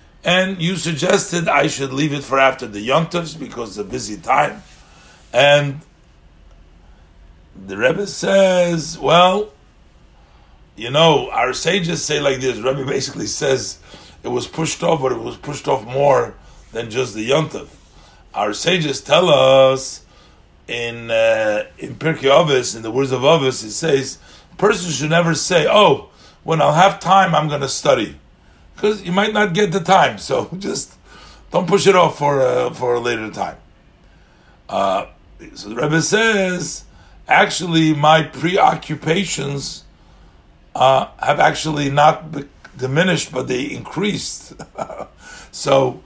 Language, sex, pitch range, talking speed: English, male, 130-175 Hz, 145 wpm